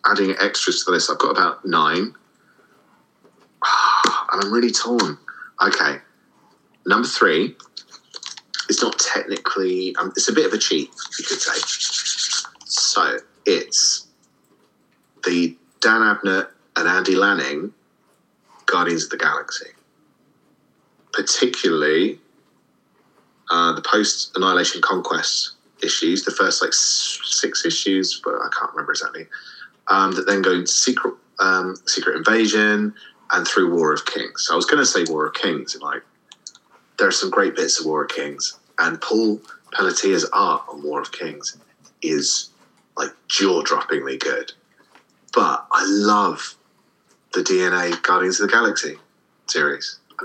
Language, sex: English, male